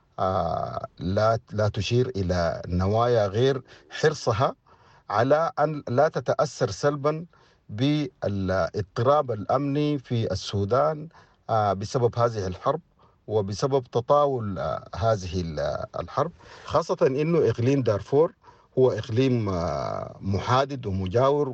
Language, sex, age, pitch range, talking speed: English, male, 50-69, 100-140 Hz, 85 wpm